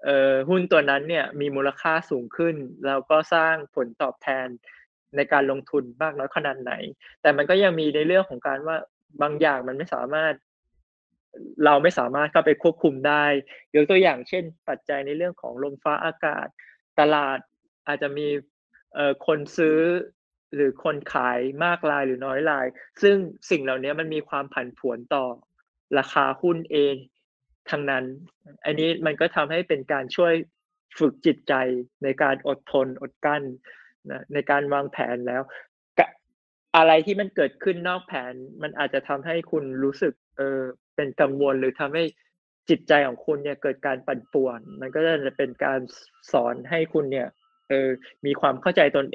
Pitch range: 135-160 Hz